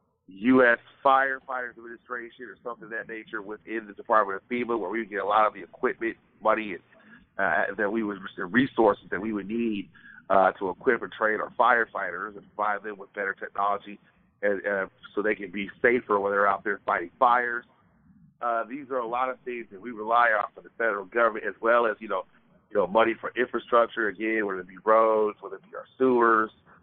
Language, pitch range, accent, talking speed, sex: English, 105-125 Hz, American, 210 wpm, male